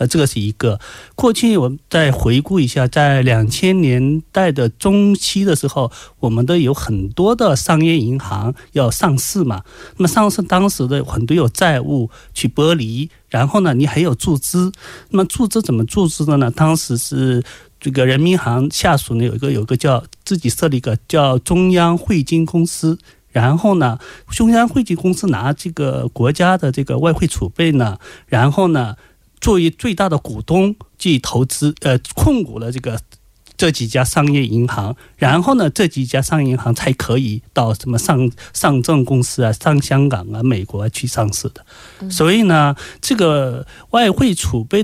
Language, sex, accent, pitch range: Korean, male, Chinese, 125-175 Hz